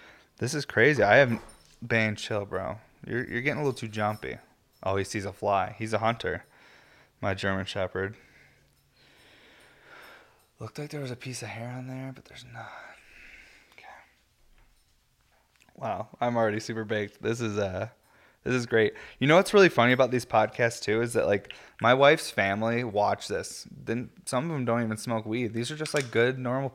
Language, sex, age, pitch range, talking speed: English, male, 20-39, 105-120 Hz, 185 wpm